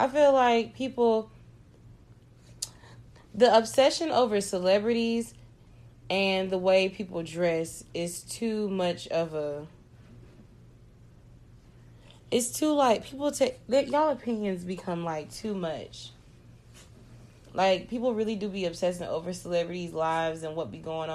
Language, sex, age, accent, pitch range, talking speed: English, female, 20-39, American, 155-205 Hz, 120 wpm